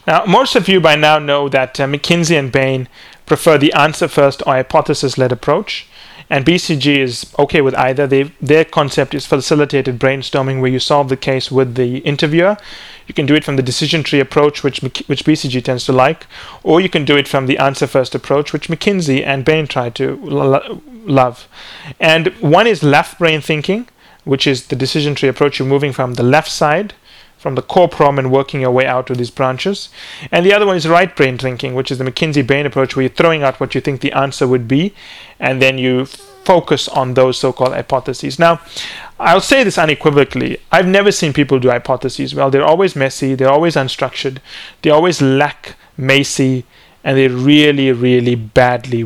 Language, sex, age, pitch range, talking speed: English, male, 30-49, 130-155 Hz, 190 wpm